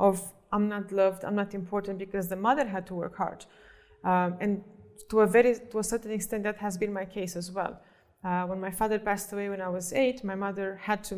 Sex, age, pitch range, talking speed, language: female, 20-39, 195-230 Hz, 225 wpm, English